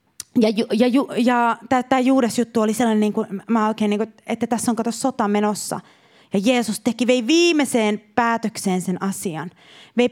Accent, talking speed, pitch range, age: native, 185 wpm, 220-320 Hz, 30-49